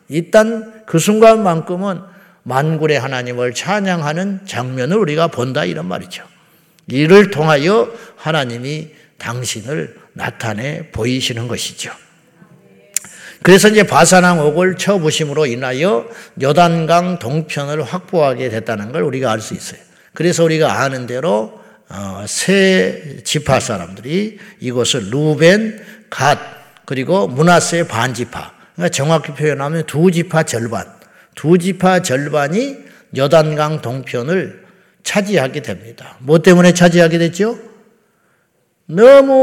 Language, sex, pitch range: Korean, male, 135-190 Hz